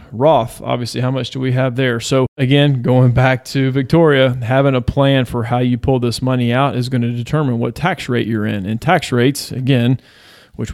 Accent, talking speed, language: American, 210 wpm, English